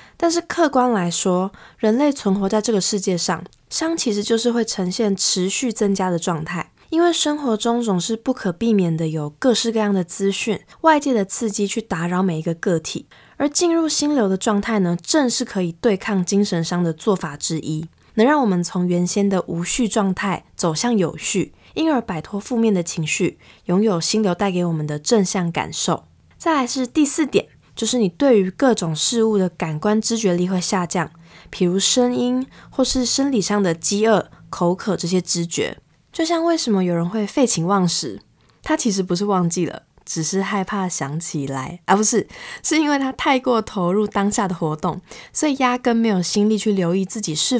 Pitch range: 175-230 Hz